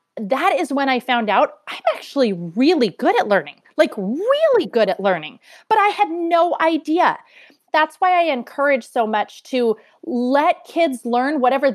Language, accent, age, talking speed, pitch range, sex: English, American, 30-49, 170 wpm, 220-310 Hz, female